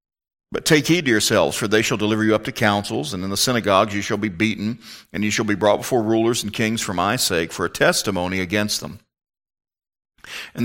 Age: 50-69